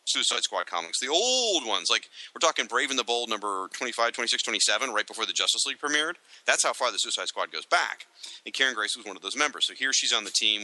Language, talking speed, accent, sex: English, 255 wpm, American, male